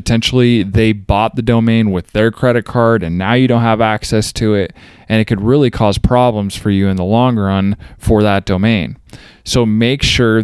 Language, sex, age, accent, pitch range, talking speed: English, male, 20-39, American, 105-130 Hz, 200 wpm